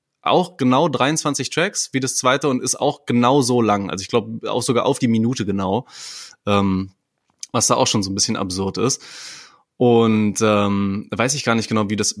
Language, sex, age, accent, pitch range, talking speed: German, male, 20-39, German, 110-135 Hz, 200 wpm